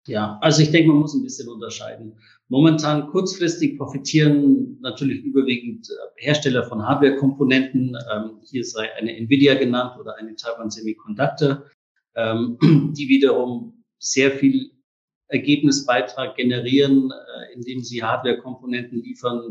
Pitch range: 115-140 Hz